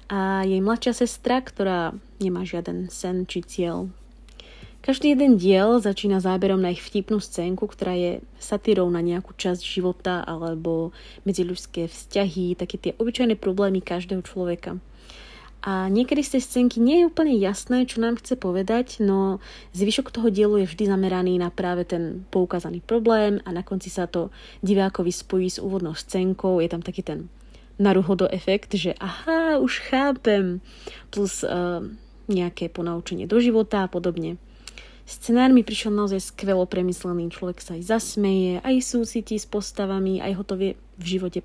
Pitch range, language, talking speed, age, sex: 180-215 Hz, Czech, 155 wpm, 30-49, female